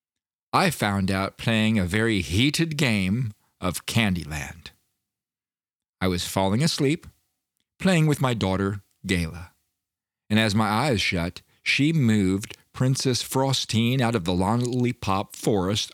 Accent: American